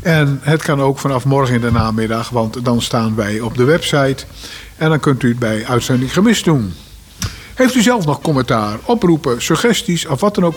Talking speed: 205 wpm